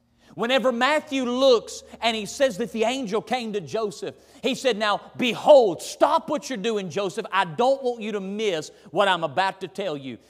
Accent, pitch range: American, 190-255 Hz